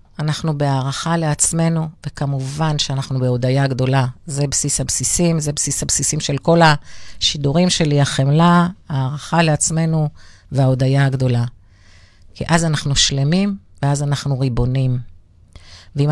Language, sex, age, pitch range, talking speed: Hebrew, female, 40-59, 120-165 Hz, 110 wpm